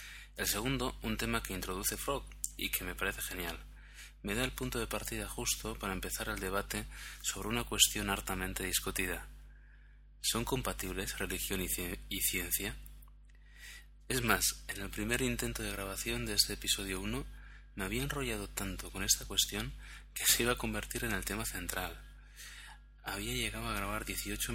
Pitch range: 95-110 Hz